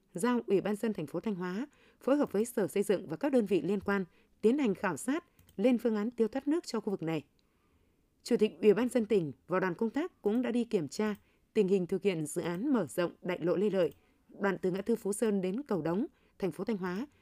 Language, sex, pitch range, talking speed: Vietnamese, female, 185-235 Hz, 260 wpm